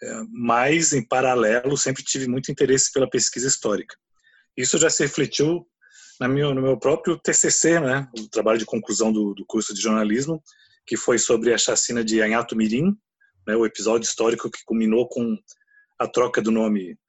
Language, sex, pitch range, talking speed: Portuguese, male, 115-170 Hz, 165 wpm